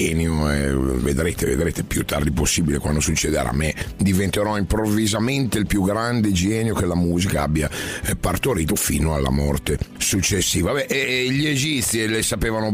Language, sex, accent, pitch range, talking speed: Italian, male, native, 80-110 Hz, 140 wpm